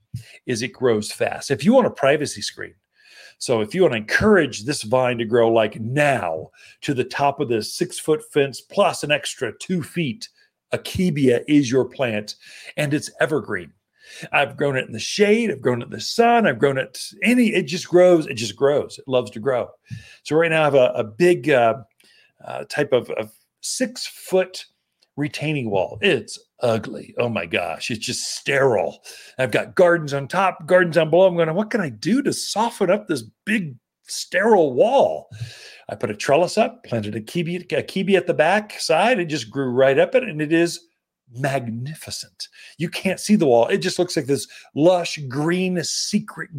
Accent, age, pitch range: American, 40-59, 130-185 Hz